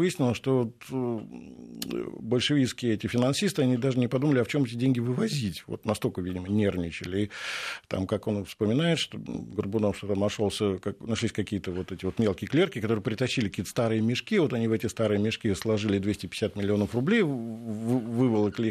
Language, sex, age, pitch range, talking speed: Russian, male, 50-69, 100-130 Hz, 165 wpm